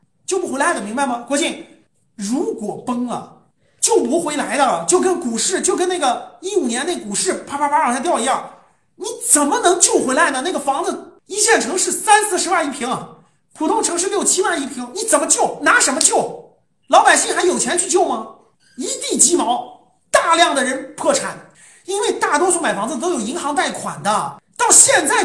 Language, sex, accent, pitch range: Chinese, male, native, 280-370 Hz